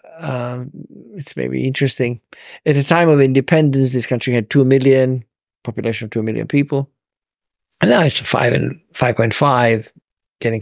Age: 50-69